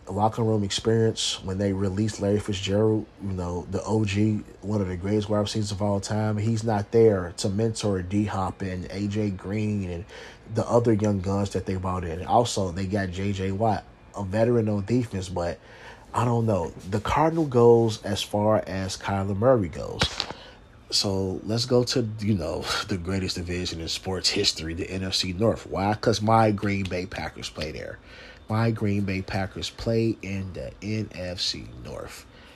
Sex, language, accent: male, English, American